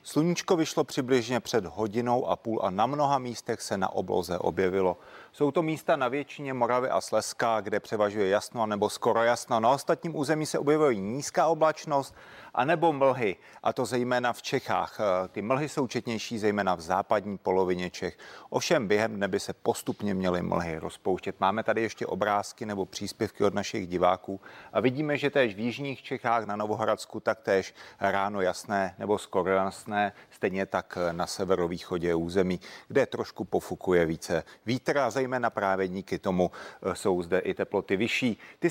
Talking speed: 170 wpm